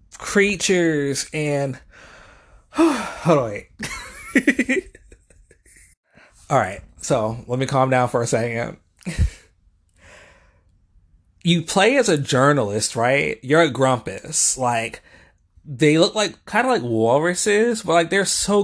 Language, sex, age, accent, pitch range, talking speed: English, male, 20-39, American, 115-175 Hz, 120 wpm